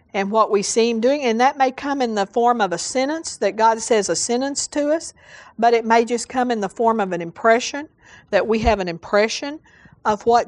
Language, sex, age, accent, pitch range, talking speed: English, female, 50-69, American, 195-245 Hz, 235 wpm